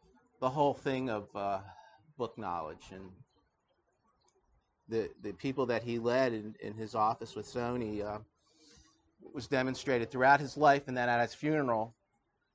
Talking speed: 150 wpm